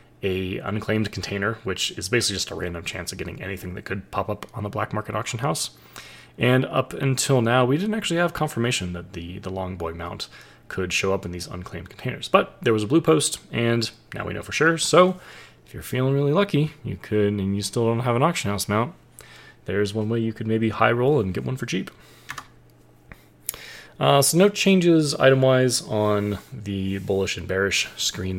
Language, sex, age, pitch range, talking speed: English, male, 20-39, 95-125 Hz, 210 wpm